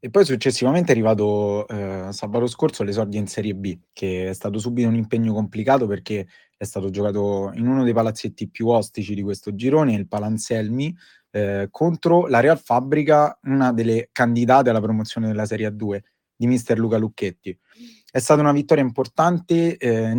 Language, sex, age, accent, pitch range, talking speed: Italian, male, 20-39, native, 105-130 Hz, 170 wpm